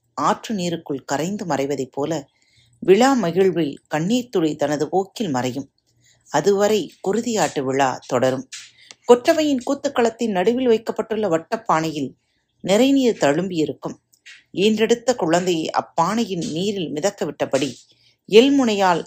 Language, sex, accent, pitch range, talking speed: Tamil, female, native, 145-225 Hz, 100 wpm